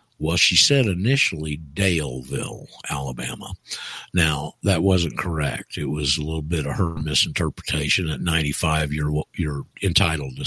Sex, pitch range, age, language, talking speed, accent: male, 75-95 Hz, 60-79, English, 140 wpm, American